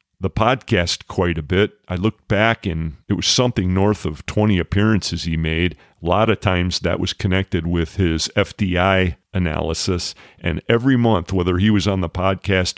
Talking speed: 180 wpm